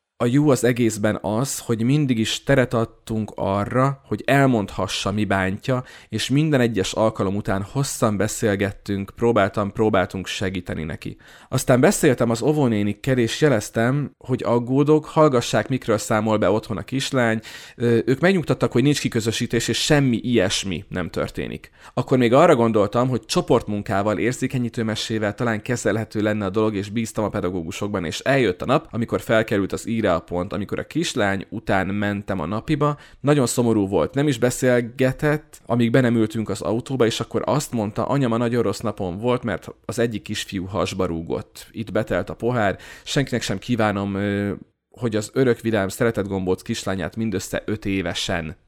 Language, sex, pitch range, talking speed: Hungarian, male, 100-125 Hz, 160 wpm